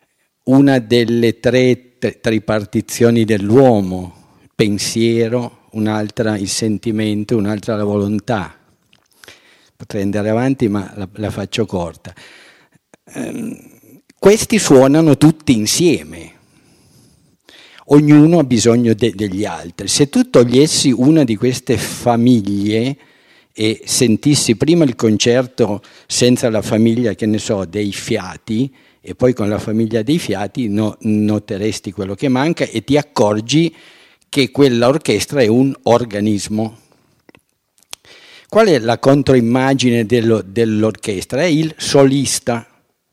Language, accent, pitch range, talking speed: Italian, native, 105-135 Hz, 115 wpm